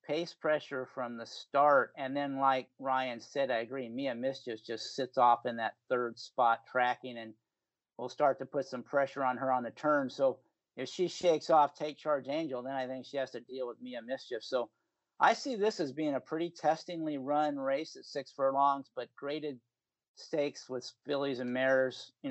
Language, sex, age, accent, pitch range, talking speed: English, male, 50-69, American, 125-150 Hz, 200 wpm